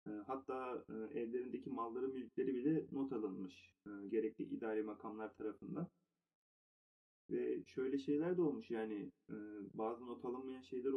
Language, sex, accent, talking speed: Turkish, male, native, 115 wpm